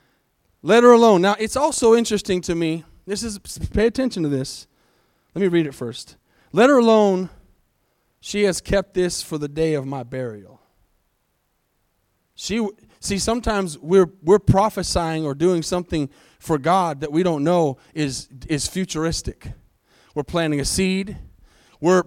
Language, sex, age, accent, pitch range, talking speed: English, male, 30-49, American, 165-205 Hz, 150 wpm